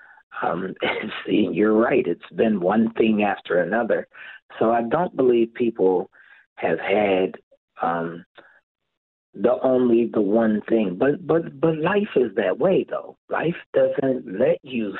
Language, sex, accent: English, male, American